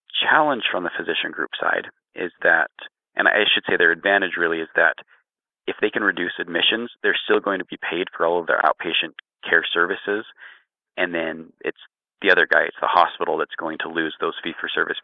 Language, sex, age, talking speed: English, male, 30-49, 200 wpm